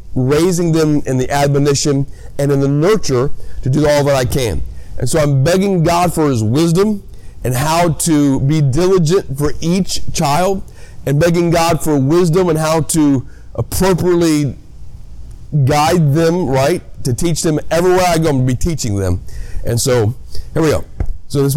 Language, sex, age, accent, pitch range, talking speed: English, male, 40-59, American, 105-155 Hz, 165 wpm